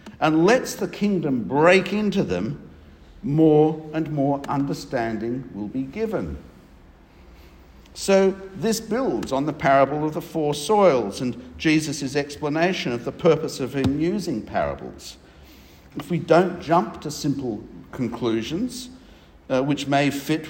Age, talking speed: 60-79, 130 wpm